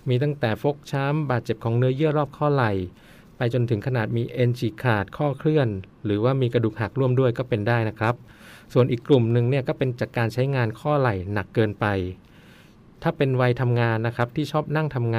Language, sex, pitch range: Thai, male, 110-135 Hz